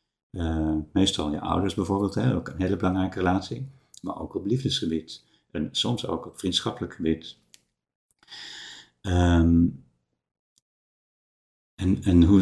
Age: 50-69